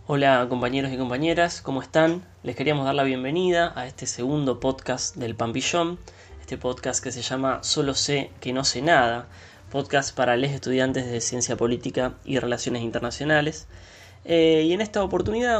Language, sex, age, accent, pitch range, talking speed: Spanish, male, 20-39, Argentinian, 120-155 Hz, 165 wpm